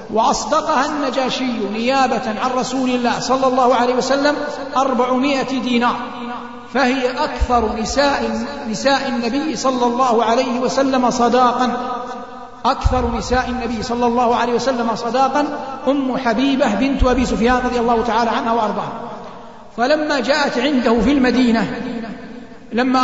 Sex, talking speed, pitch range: male, 120 wpm, 235-260 Hz